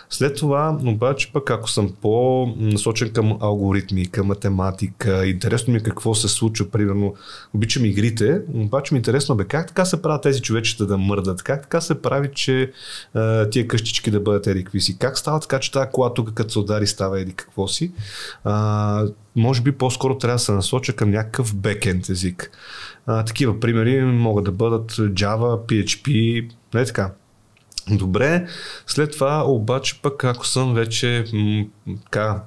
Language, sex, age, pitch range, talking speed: Bulgarian, male, 30-49, 100-130 Hz, 165 wpm